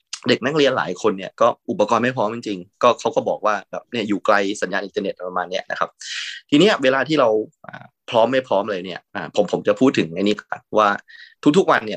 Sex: male